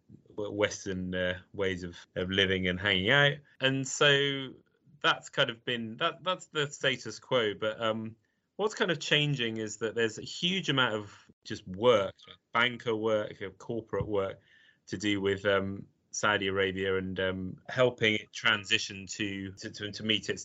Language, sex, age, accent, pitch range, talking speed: English, male, 20-39, British, 95-120 Hz, 165 wpm